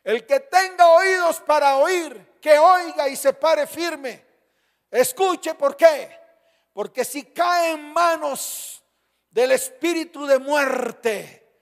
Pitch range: 245-310 Hz